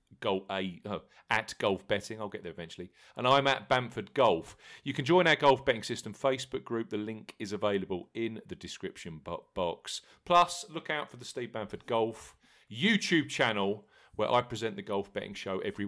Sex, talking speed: male, 180 wpm